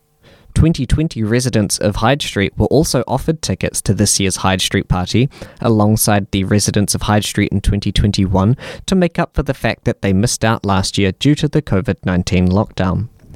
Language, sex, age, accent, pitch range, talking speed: English, male, 10-29, Australian, 100-135 Hz, 180 wpm